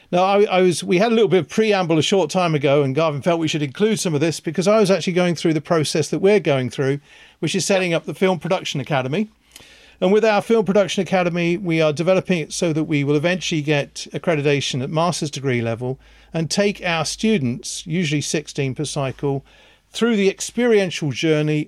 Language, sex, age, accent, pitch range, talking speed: English, male, 50-69, British, 145-185 Hz, 215 wpm